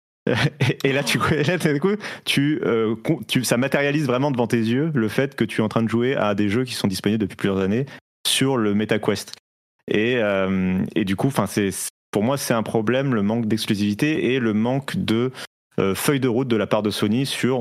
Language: French